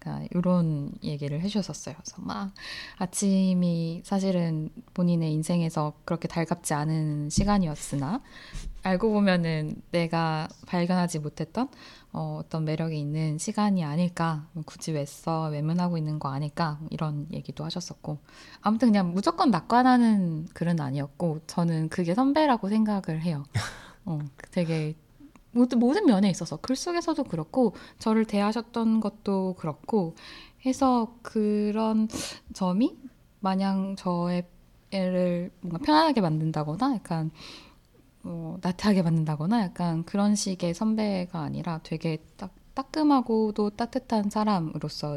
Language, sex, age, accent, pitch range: Korean, female, 10-29, native, 155-210 Hz